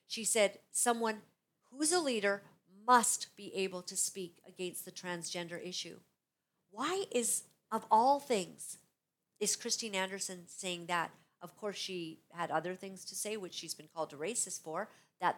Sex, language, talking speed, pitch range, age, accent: female, English, 160 wpm, 180-240 Hz, 50-69, American